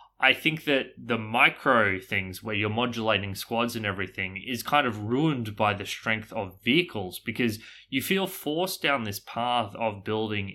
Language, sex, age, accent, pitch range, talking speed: English, male, 20-39, Australian, 105-125 Hz, 170 wpm